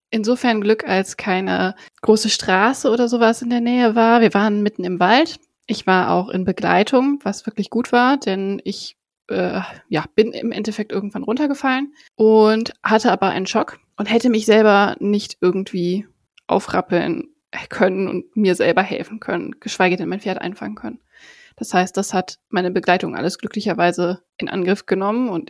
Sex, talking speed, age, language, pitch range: female, 165 wpm, 20-39, German, 190-230 Hz